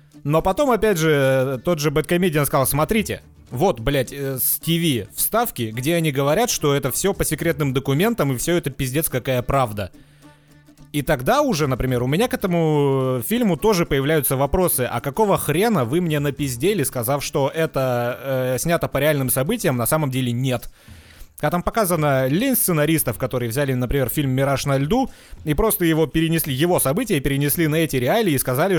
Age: 30-49